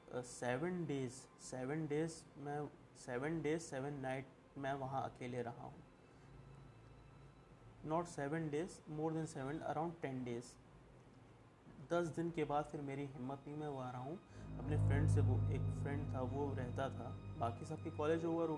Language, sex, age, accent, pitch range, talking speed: Hindi, male, 30-49, native, 120-150 Hz, 160 wpm